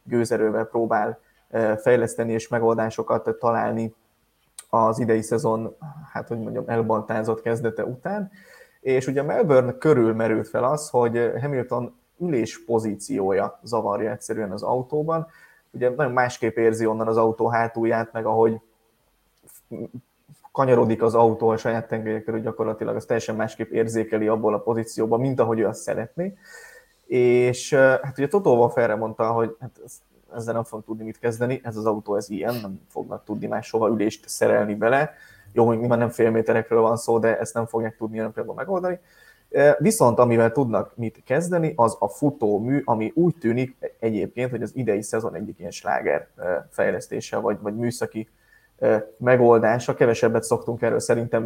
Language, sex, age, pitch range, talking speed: Hungarian, male, 20-39, 110-125 Hz, 150 wpm